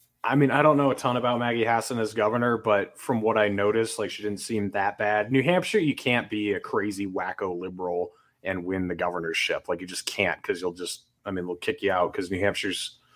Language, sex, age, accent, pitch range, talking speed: English, male, 20-39, American, 100-120 Hz, 235 wpm